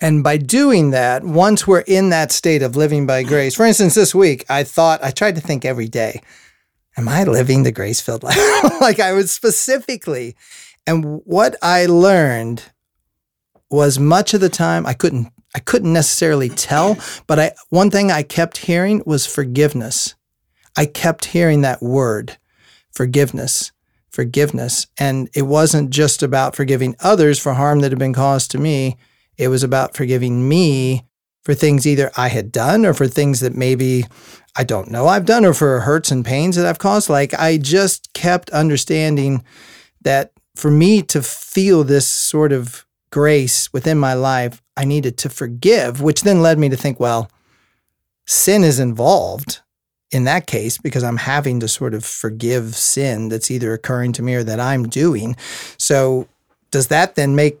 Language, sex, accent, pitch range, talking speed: English, male, American, 125-165 Hz, 175 wpm